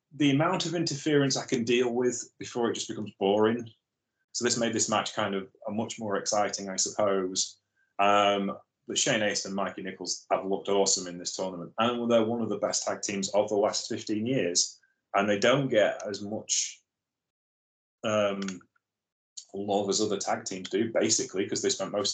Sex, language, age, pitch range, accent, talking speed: male, English, 30-49, 95-115 Hz, British, 190 wpm